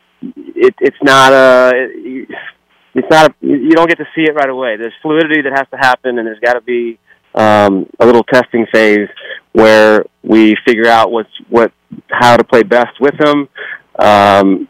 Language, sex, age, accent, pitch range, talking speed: English, male, 30-49, American, 115-135 Hz, 165 wpm